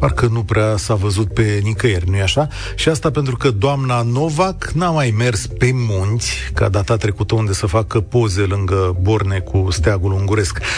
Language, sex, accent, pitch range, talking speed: Romanian, male, native, 105-145 Hz, 180 wpm